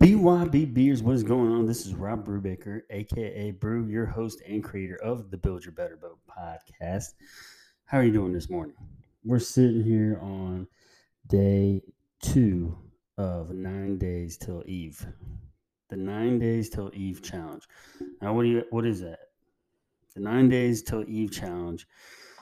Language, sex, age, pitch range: English, male, 30-49, 90-115 Hz